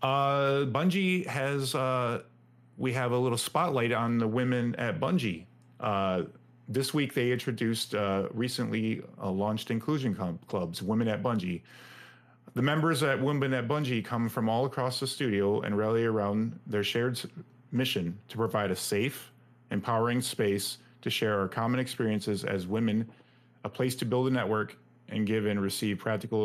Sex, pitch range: male, 100-125 Hz